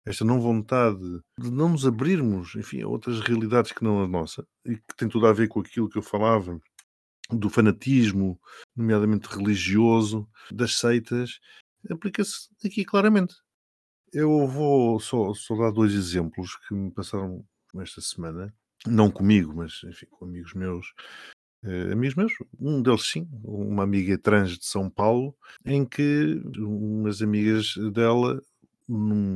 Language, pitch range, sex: Portuguese, 95-115 Hz, male